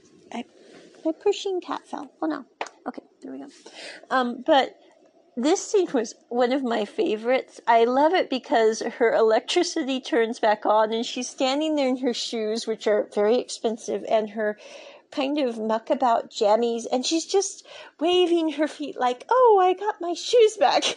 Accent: American